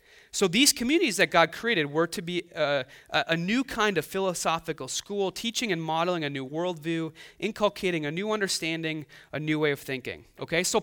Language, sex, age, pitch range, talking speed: English, male, 30-49, 140-200 Hz, 185 wpm